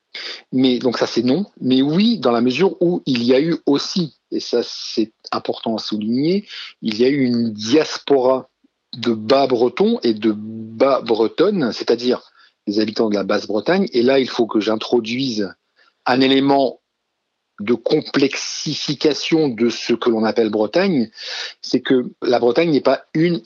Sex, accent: male, French